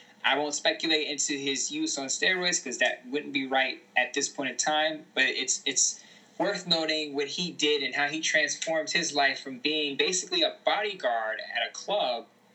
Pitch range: 140-195 Hz